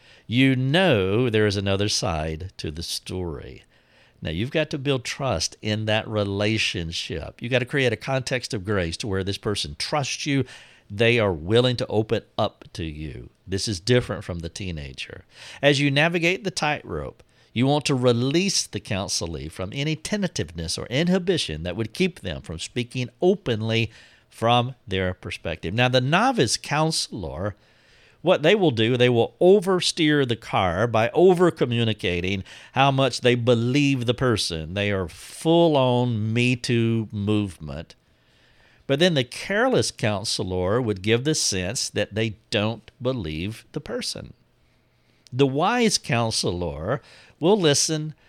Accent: American